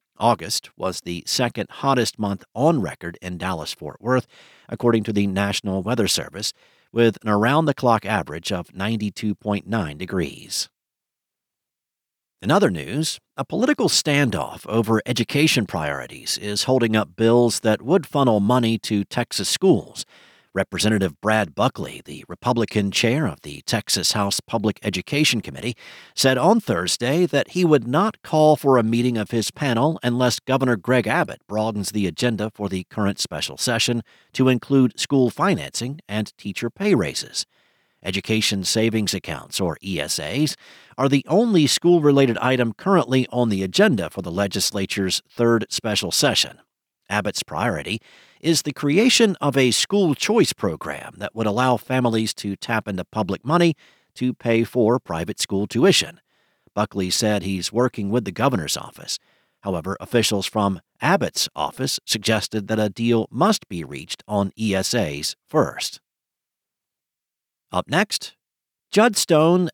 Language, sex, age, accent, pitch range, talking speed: English, male, 50-69, American, 100-130 Hz, 140 wpm